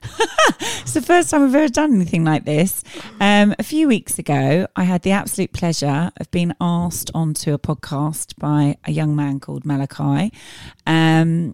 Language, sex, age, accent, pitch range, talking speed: English, female, 30-49, British, 150-200 Hz, 170 wpm